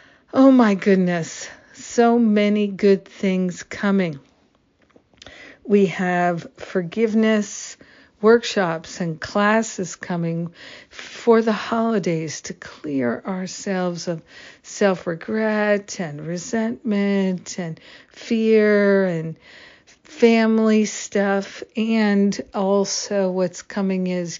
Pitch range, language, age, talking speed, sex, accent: 175-210 Hz, English, 50-69, 85 wpm, female, American